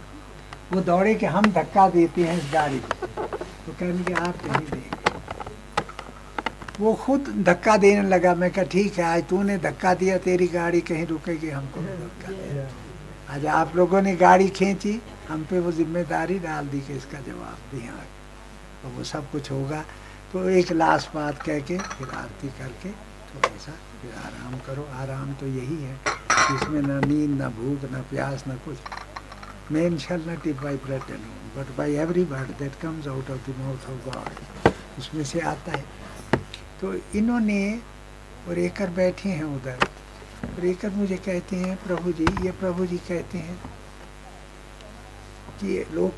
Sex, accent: male, native